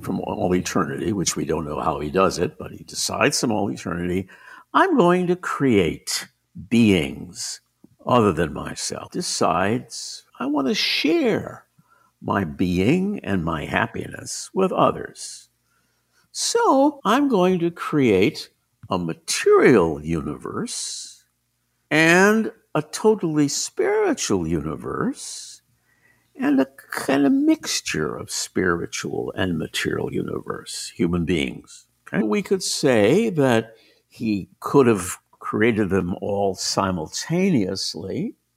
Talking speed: 115 wpm